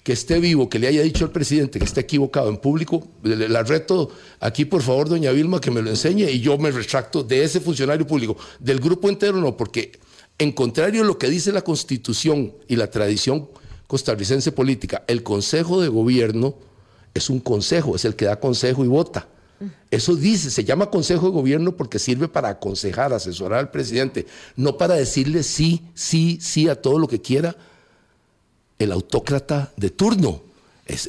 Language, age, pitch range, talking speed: Spanish, 50-69, 115-165 Hz, 185 wpm